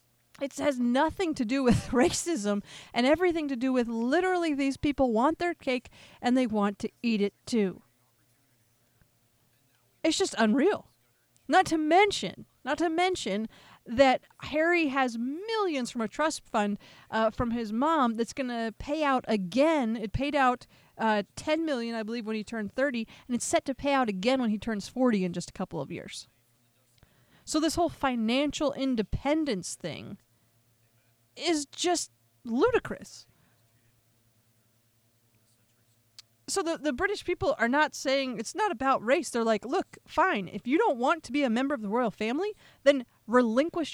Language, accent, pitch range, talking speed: English, American, 215-295 Hz, 165 wpm